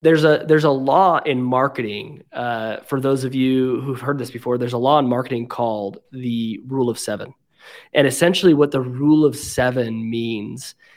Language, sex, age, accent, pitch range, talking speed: English, male, 20-39, American, 125-155 Hz, 185 wpm